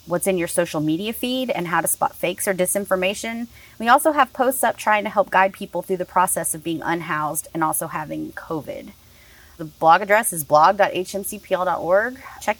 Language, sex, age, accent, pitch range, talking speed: English, female, 30-49, American, 160-210 Hz, 185 wpm